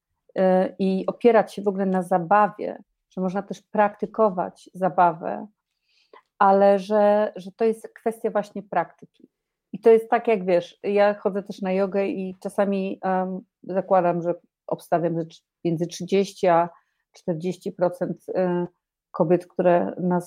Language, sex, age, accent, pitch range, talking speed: Polish, female, 40-59, native, 180-215 Hz, 130 wpm